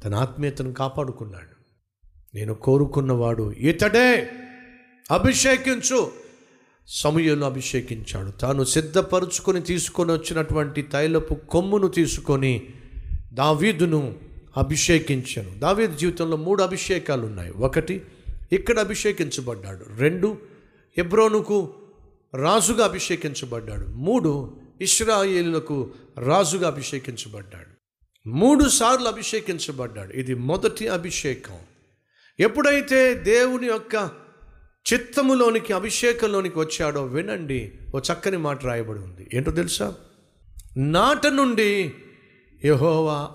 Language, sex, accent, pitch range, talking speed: Telugu, male, native, 115-185 Hz, 80 wpm